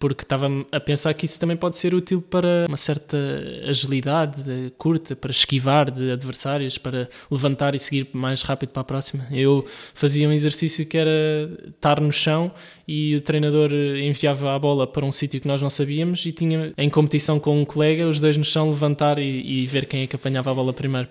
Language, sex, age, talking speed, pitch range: Portuguese, male, 20-39, 200 wpm, 135-155 Hz